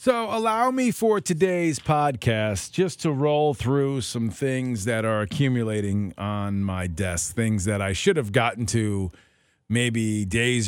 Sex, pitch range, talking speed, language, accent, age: male, 100-145 Hz, 150 wpm, English, American, 40-59